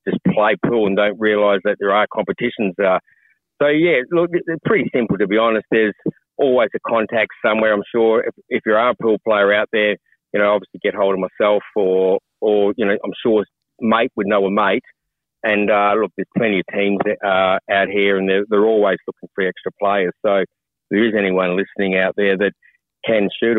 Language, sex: English, male